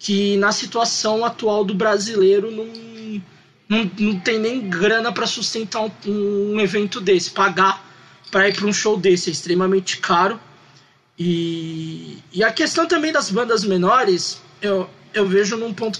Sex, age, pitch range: male, 20-39, 190-235 Hz